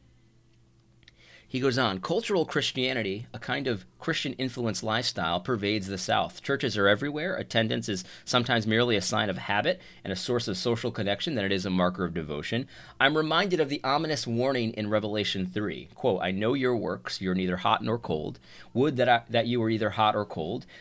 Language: English